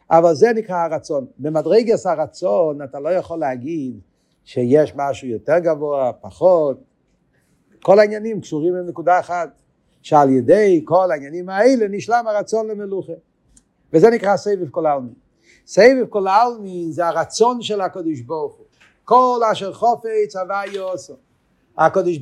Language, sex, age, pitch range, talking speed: Hebrew, male, 50-69, 175-220 Hz, 120 wpm